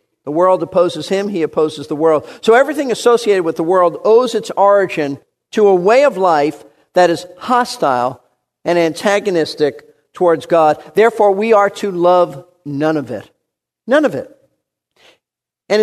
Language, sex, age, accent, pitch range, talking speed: English, male, 50-69, American, 155-210 Hz, 155 wpm